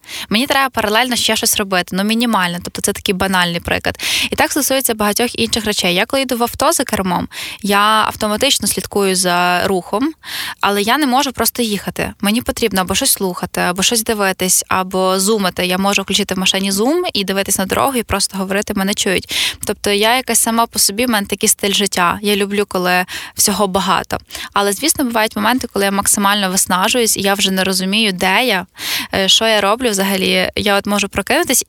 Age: 20-39